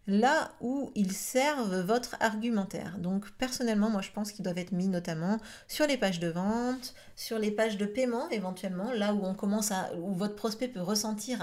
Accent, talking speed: French, 195 wpm